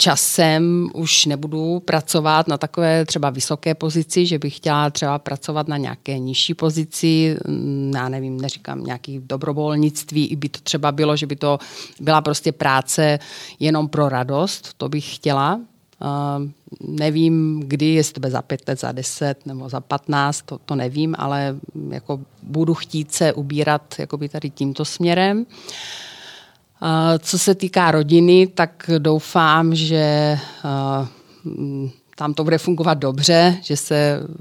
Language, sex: Czech, female